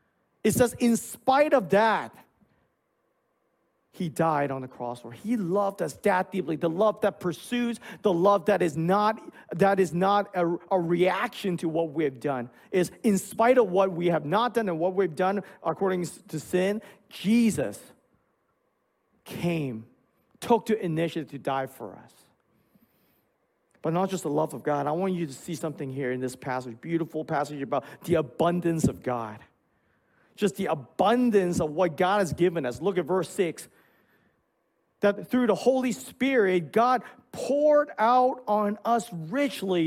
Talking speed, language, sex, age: 165 wpm, English, male, 40-59